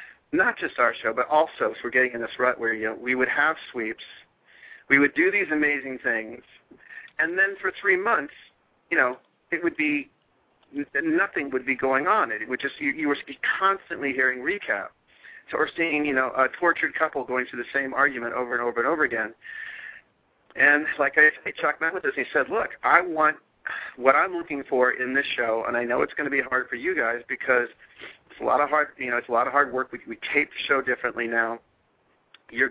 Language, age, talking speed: English, 40-59, 220 wpm